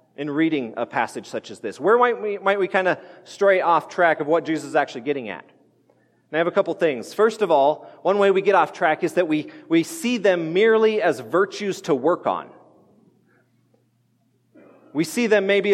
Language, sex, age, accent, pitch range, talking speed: English, male, 40-59, American, 160-215 Hz, 210 wpm